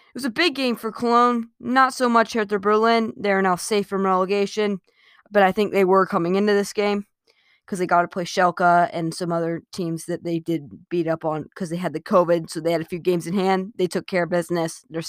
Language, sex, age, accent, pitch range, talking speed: English, female, 20-39, American, 170-215 Hz, 250 wpm